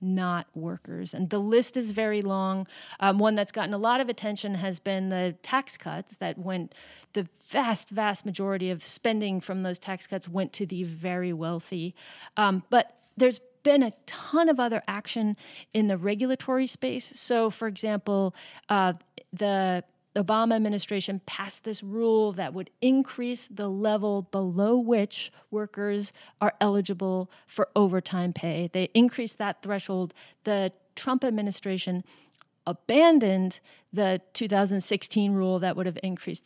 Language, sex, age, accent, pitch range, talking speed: English, female, 40-59, American, 185-215 Hz, 150 wpm